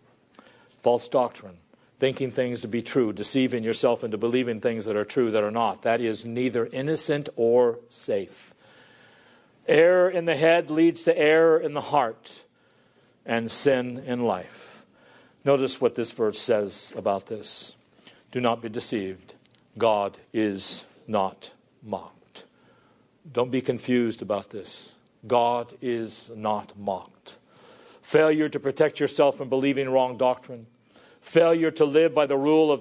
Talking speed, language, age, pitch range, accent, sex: 140 wpm, English, 50-69, 110-145 Hz, American, male